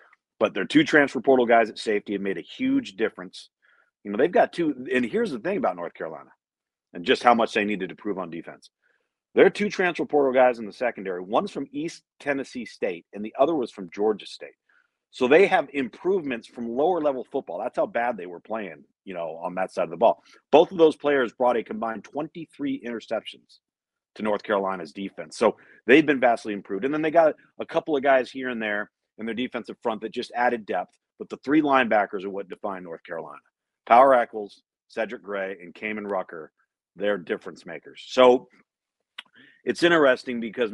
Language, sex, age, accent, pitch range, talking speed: English, male, 40-59, American, 105-145 Hz, 200 wpm